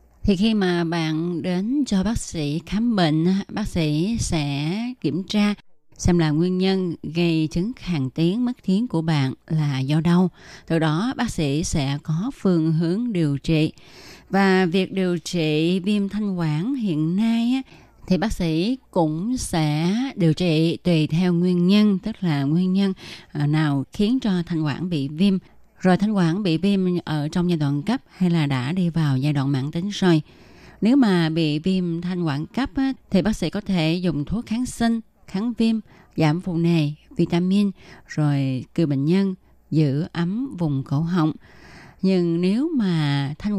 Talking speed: 175 wpm